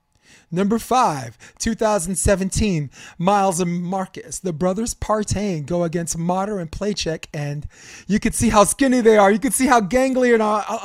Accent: American